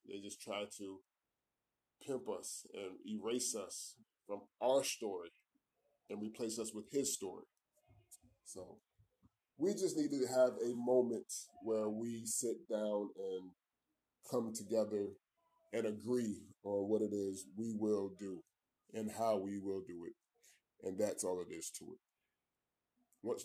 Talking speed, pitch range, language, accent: 145 wpm, 100-125 Hz, English, American